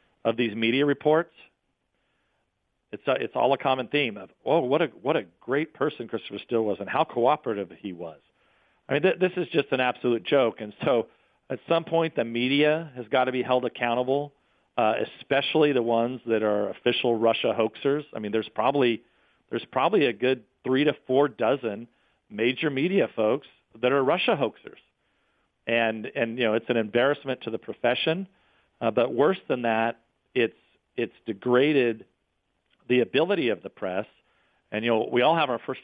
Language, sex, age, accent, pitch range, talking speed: English, male, 50-69, American, 115-135 Hz, 180 wpm